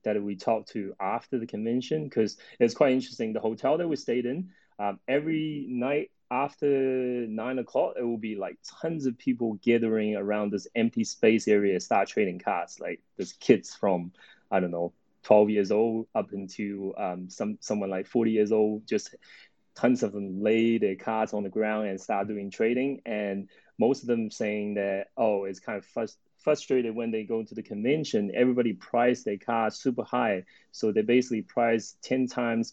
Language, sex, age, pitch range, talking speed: English, male, 20-39, 100-120 Hz, 185 wpm